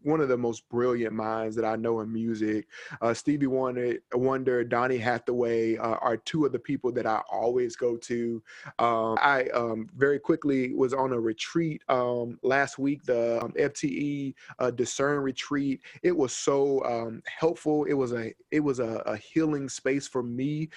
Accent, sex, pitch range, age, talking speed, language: American, male, 120-140 Hz, 20-39, 175 wpm, English